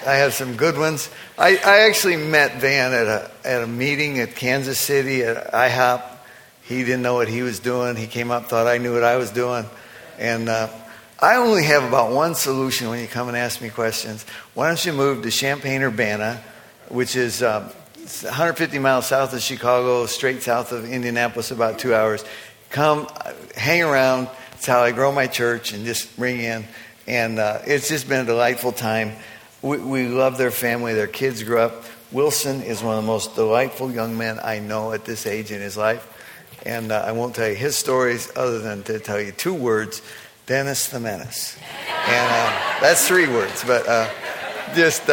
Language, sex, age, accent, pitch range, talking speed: English, male, 50-69, American, 115-135 Hz, 195 wpm